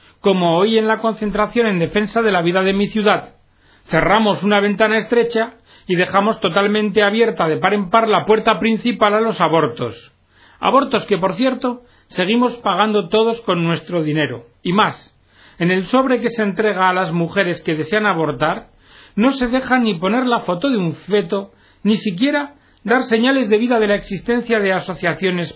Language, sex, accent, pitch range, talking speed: Spanish, male, Spanish, 165-225 Hz, 180 wpm